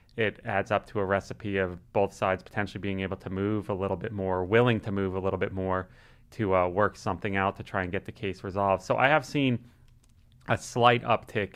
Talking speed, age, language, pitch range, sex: 230 wpm, 30-49, English, 100-115 Hz, male